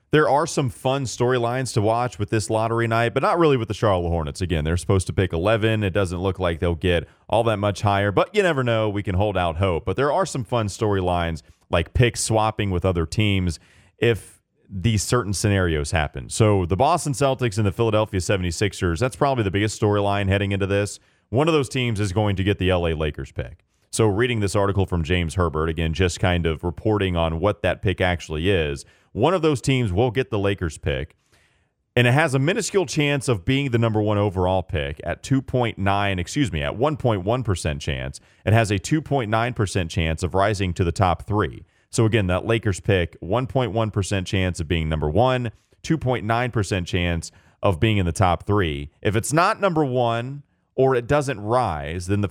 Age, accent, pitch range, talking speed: 30-49, American, 90-120 Hz, 200 wpm